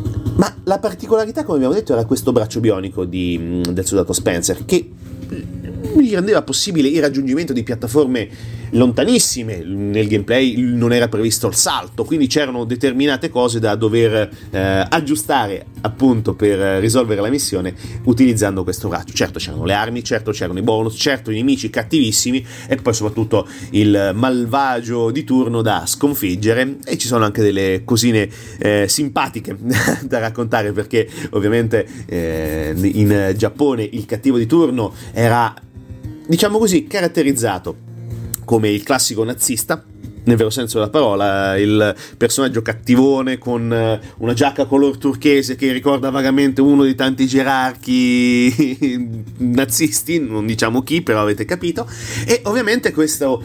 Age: 30-49